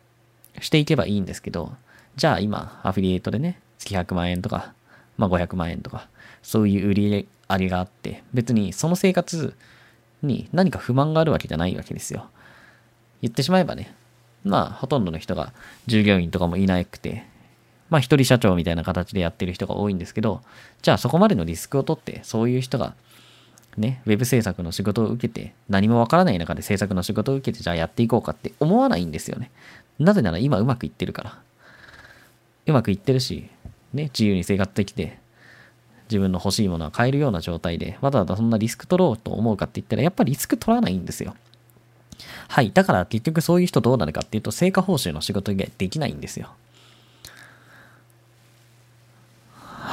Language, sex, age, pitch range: Japanese, male, 20-39, 95-125 Hz